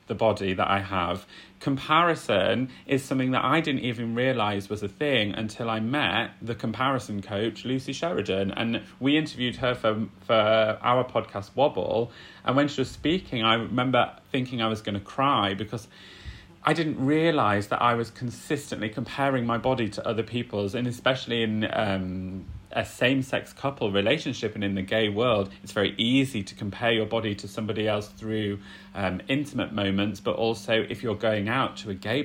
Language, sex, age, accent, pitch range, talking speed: English, male, 30-49, British, 100-130 Hz, 180 wpm